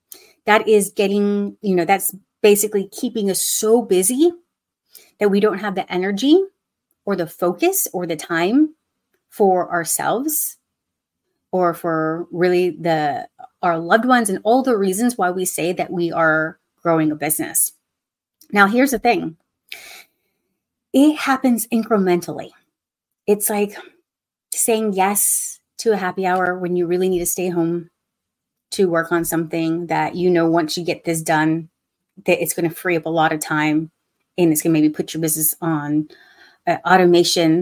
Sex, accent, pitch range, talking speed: female, American, 170-215 Hz, 160 wpm